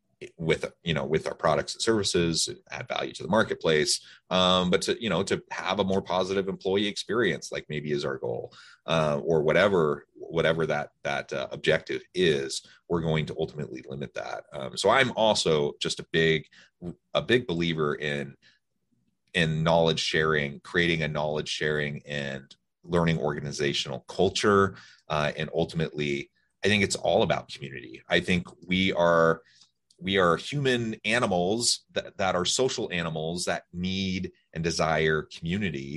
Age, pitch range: 30-49, 75-85 Hz